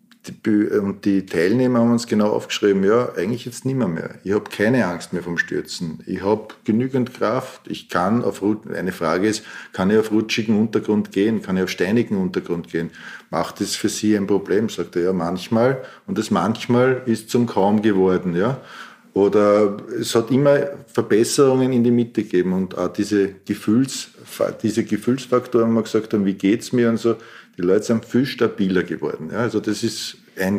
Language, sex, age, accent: German, male, 50-69, Austrian